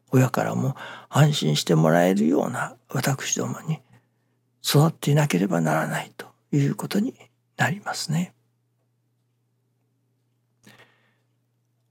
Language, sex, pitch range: Japanese, male, 120-175 Hz